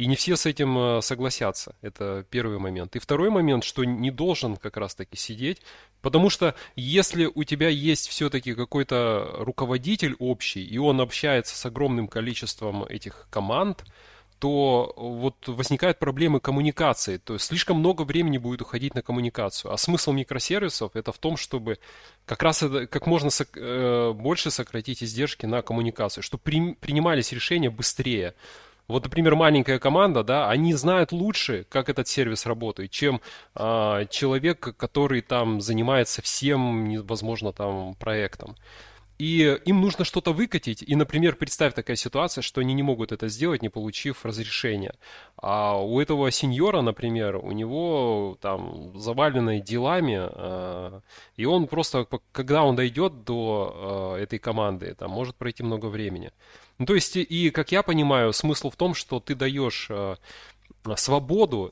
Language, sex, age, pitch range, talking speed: Russian, male, 20-39, 110-150 Hz, 145 wpm